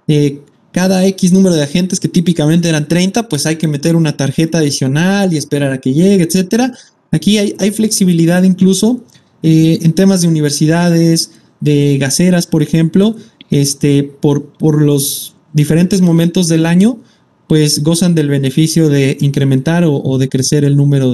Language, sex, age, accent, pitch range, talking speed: Spanish, male, 30-49, Mexican, 155-195 Hz, 160 wpm